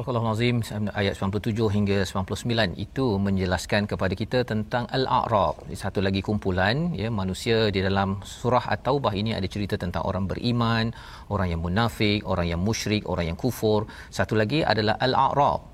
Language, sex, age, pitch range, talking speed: Malayalam, male, 40-59, 100-125 Hz, 155 wpm